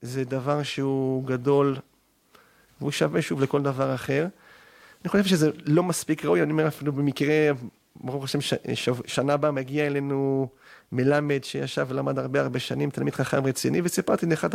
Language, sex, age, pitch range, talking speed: Hebrew, male, 30-49, 130-155 Hz, 155 wpm